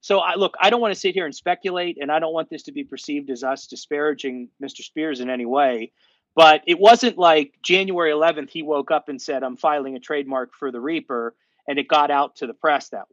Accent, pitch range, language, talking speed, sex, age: American, 140-175 Hz, English, 240 wpm, male, 30-49